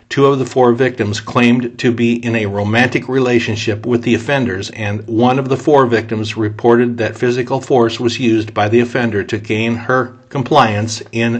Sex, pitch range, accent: male, 115-125 Hz, American